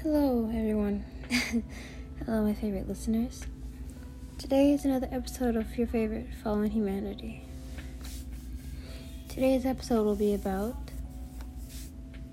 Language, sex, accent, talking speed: English, female, American, 85 wpm